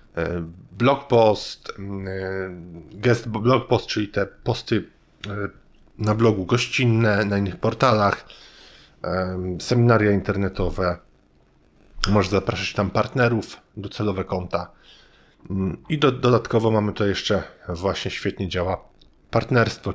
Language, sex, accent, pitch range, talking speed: Polish, male, native, 95-120 Hz, 85 wpm